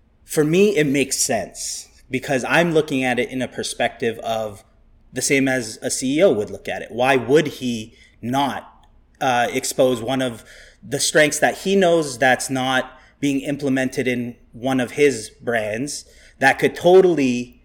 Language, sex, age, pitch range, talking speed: English, male, 30-49, 120-145 Hz, 165 wpm